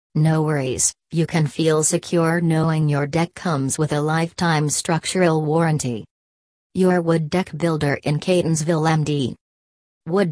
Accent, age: American, 40-59